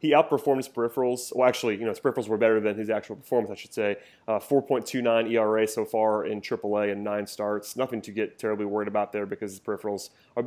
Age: 30-49